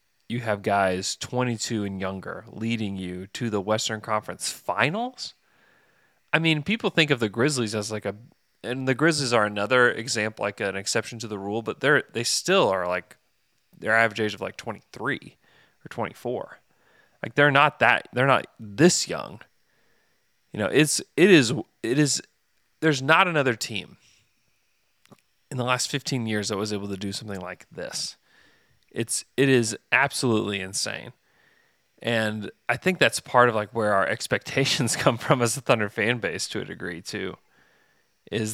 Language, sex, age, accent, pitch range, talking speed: English, male, 30-49, American, 105-145 Hz, 170 wpm